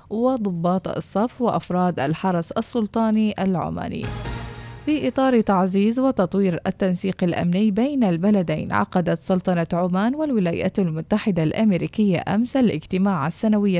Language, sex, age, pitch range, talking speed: English, female, 20-39, 175-230 Hz, 100 wpm